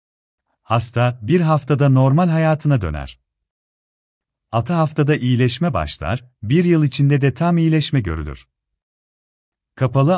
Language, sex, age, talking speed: Turkish, male, 40-59, 105 wpm